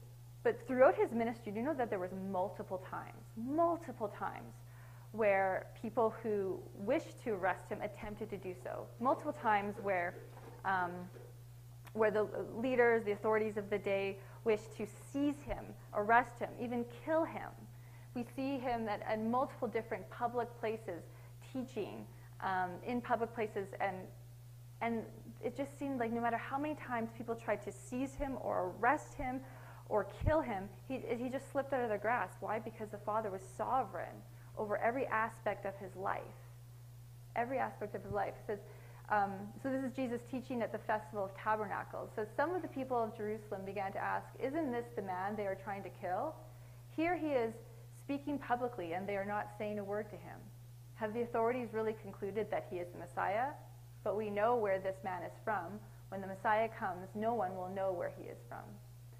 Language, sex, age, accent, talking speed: English, female, 20-39, American, 185 wpm